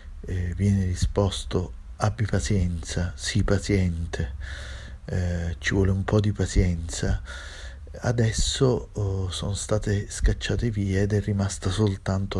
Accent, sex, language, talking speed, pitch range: native, male, Italian, 115 wpm, 90-110 Hz